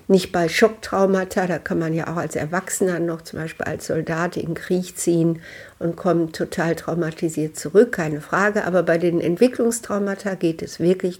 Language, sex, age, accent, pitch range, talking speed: German, female, 60-79, German, 160-185 Hz, 175 wpm